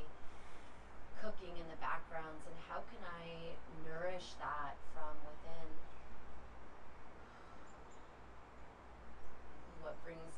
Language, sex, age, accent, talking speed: English, female, 30-49, American, 75 wpm